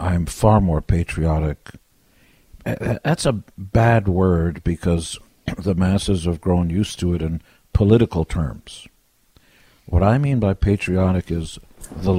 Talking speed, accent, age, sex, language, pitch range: 130 wpm, American, 60-79, male, English, 80-95 Hz